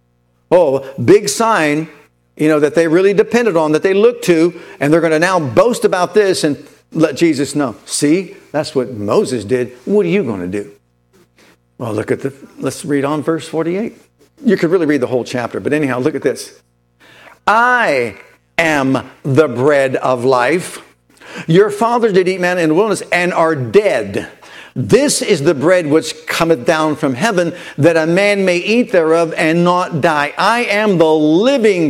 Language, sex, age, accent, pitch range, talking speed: English, male, 60-79, American, 155-210 Hz, 180 wpm